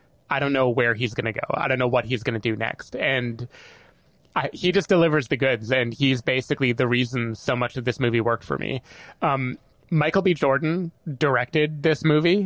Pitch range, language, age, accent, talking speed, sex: 125-150 Hz, English, 20-39, American, 205 wpm, male